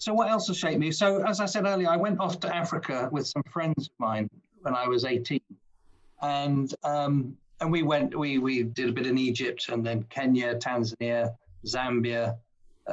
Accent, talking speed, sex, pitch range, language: British, 200 wpm, male, 120-155 Hz, English